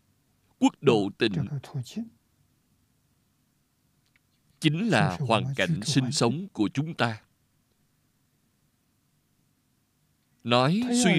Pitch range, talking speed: 120-155 Hz, 75 wpm